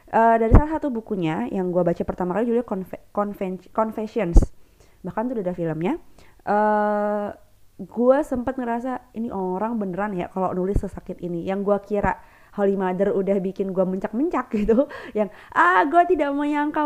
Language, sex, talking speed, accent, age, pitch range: Indonesian, female, 165 wpm, native, 20-39, 185-245 Hz